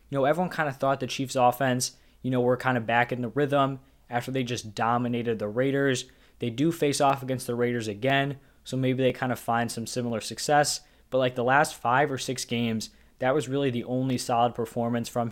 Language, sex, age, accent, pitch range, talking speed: English, male, 20-39, American, 115-135 Hz, 225 wpm